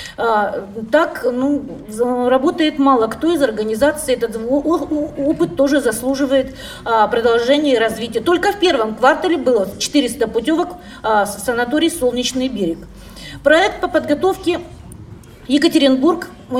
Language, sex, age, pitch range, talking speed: Russian, female, 40-59, 230-305 Hz, 105 wpm